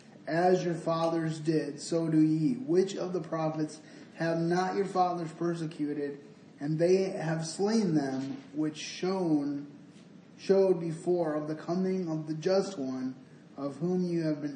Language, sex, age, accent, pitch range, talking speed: English, male, 20-39, American, 155-185 Hz, 145 wpm